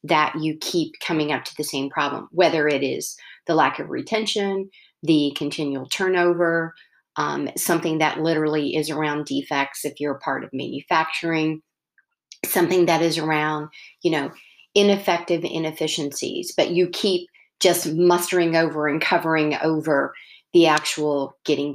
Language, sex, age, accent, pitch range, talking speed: English, female, 40-59, American, 150-175 Hz, 145 wpm